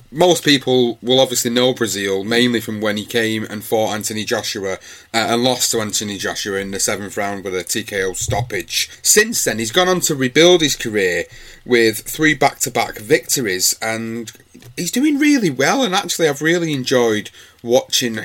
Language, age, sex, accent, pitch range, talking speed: English, 30-49, male, British, 110-140 Hz, 175 wpm